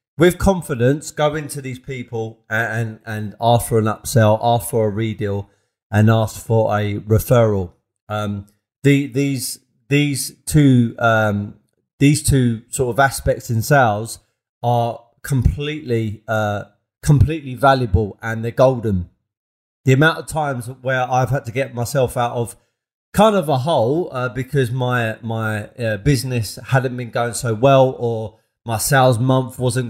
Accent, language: British, English